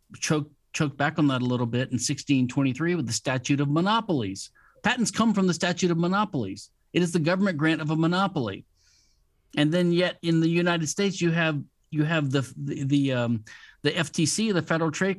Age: 50-69